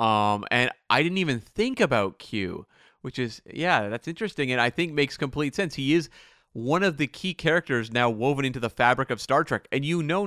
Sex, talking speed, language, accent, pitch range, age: male, 215 wpm, English, American, 120-165 Hz, 30-49